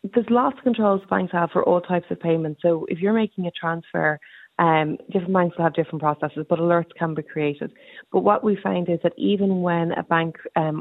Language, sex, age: English, female, 30-49